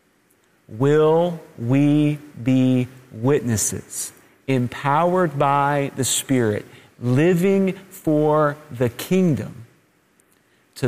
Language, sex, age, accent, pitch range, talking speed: English, male, 40-59, American, 130-165 Hz, 70 wpm